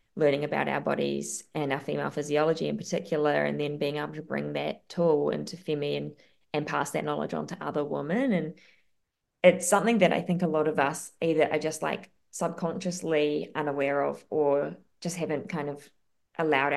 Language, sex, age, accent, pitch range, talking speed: English, female, 20-39, Australian, 145-175 Hz, 185 wpm